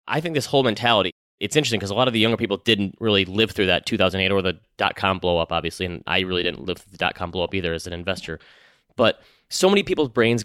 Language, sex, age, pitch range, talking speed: English, male, 30-49, 95-120 Hz, 260 wpm